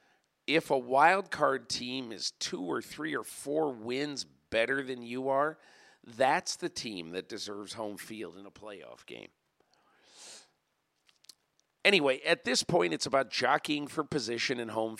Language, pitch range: English, 115-145 Hz